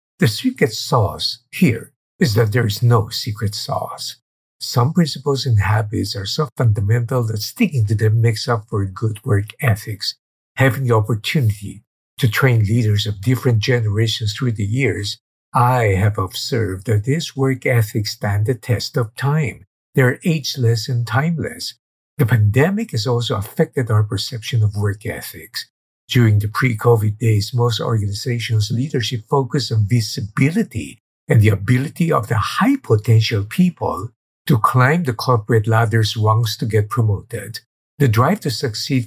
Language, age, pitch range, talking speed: English, 50-69, 110-130 Hz, 150 wpm